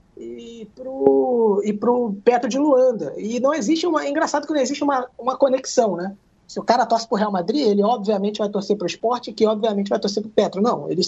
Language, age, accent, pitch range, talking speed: Portuguese, 20-39, Brazilian, 205-260 Hz, 225 wpm